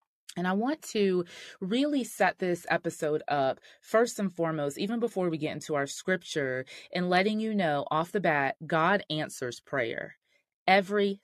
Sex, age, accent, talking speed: female, 30-49, American, 160 wpm